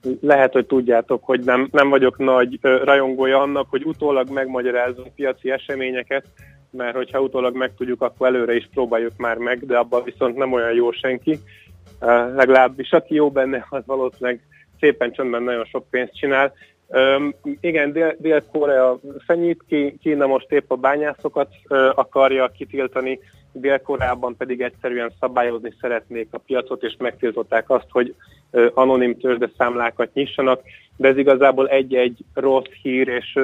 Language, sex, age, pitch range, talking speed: Hungarian, male, 30-49, 120-135 Hz, 145 wpm